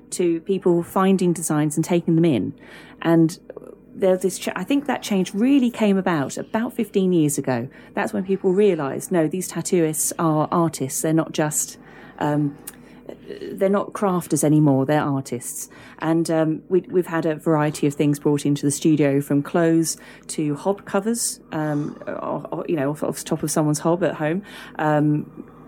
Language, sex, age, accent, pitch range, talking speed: English, female, 30-49, British, 150-185 Hz, 165 wpm